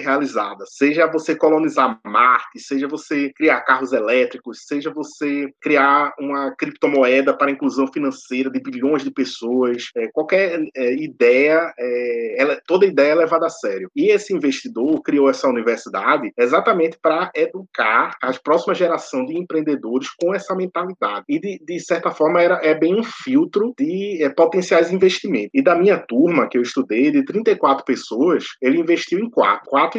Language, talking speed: Portuguese, 160 wpm